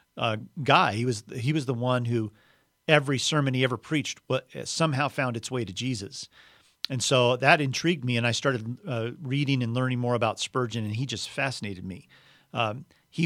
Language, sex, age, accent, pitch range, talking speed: English, male, 40-59, American, 115-145 Hz, 190 wpm